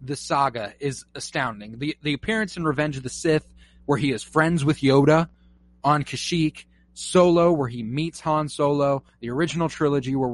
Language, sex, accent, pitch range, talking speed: English, male, American, 110-165 Hz, 175 wpm